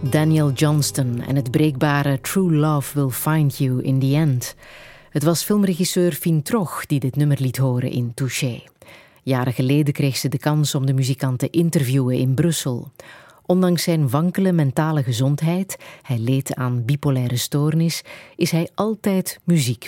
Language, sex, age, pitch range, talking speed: Dutch, female, 30-49, 130-165 Hz, 155 wpm